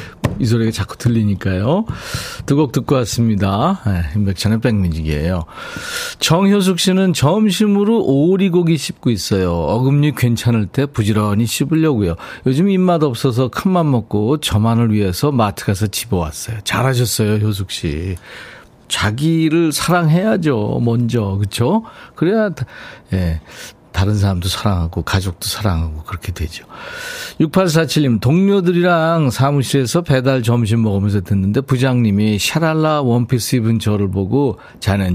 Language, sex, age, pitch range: Korean, male, 40-59, 105-150 Hz